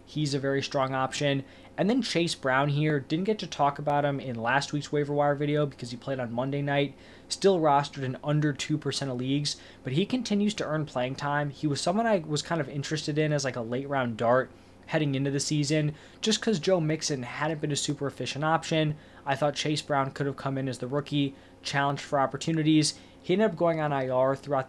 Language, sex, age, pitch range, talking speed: English, male, 20-39, 130-155 Hz, 225 wpm